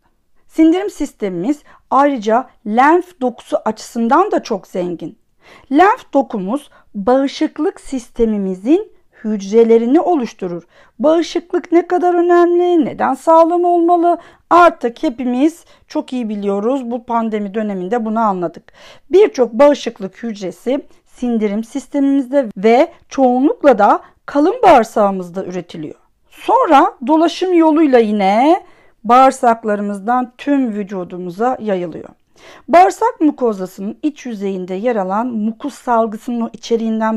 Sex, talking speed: female, 95 wpm